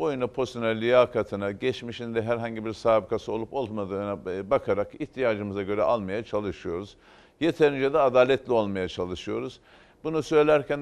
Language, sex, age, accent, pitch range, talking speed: Turkish, male, 50-69, native, 115-135 Hz, 115 wpm